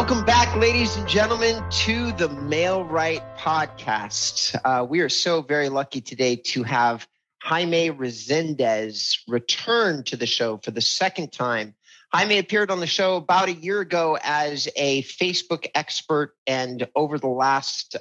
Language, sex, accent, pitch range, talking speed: English, male, American, 125-165 Hz, 155 wpm